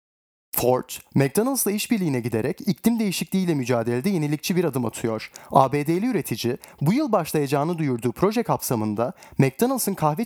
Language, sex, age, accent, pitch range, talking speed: Turkish, male, 30-49, native, 125-195 Hz, 125 wpm